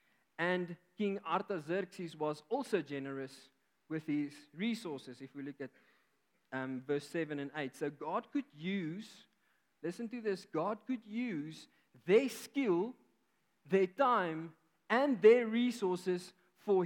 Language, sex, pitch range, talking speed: English, male, 140-190 Hz, 130 wpm